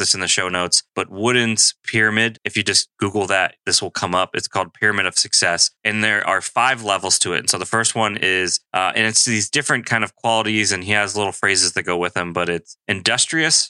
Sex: male